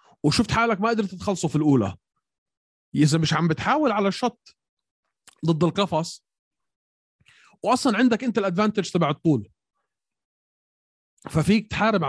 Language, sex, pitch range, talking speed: Arabic, male, 145-195 Hz, 115 wpm